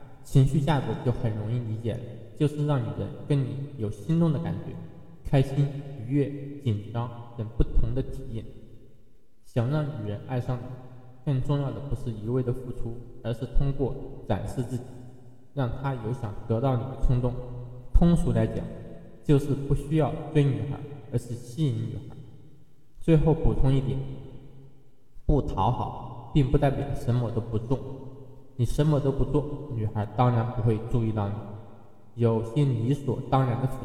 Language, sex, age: Chinese, male, 20-39